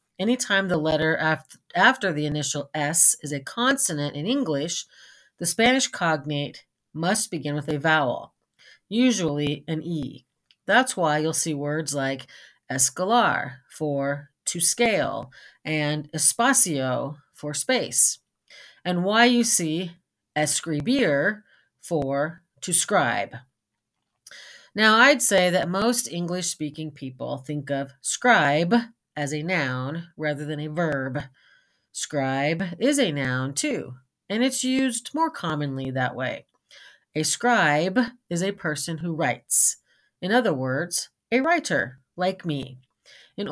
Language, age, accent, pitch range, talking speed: English, 40-59, American, 145-205 Hz, 125 wpm